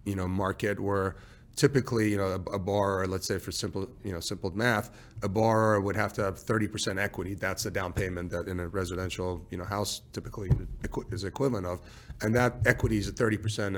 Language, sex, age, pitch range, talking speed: English, male, 30-49, 100-115 Hz, 205 wpm